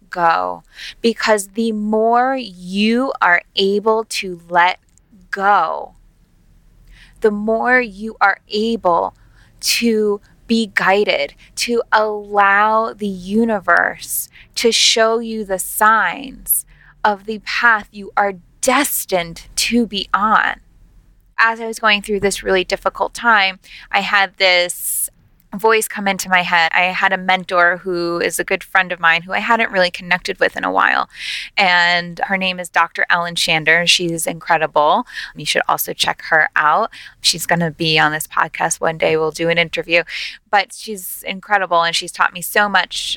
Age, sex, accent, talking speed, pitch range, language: 20-39, female, American, 155 wpm, 175-215 Hz, English